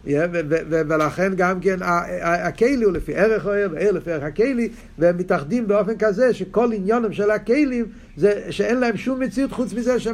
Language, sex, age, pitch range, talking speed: Hebrew, male, 50-69, 145-215 Hz, 135 wpm